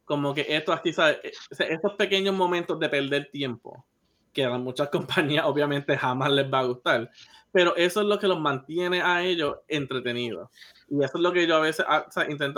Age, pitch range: 20-39, 140-175 Hz